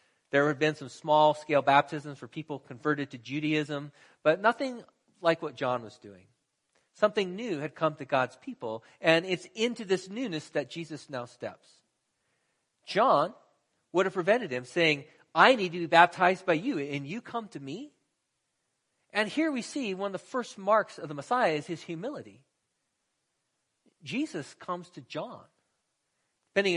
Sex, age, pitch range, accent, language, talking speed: male, 40-59, 145-190 Hz, American, English, 160 wpm